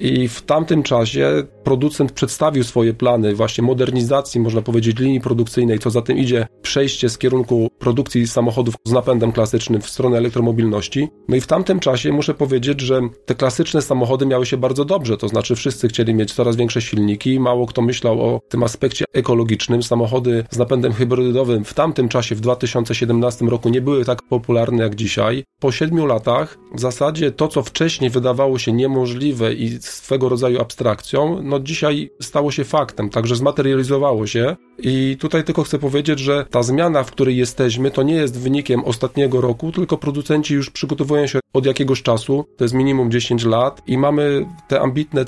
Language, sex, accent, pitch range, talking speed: Polish, male, native, 120-140 Hz, 175 wpm